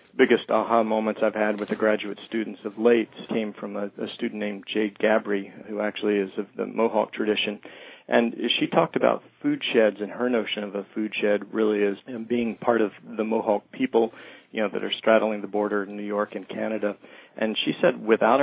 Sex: male